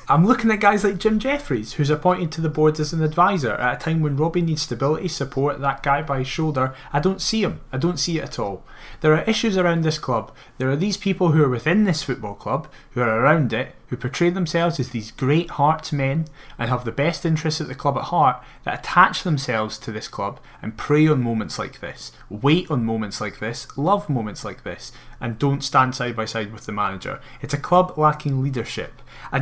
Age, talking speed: 30-49, 230 wpm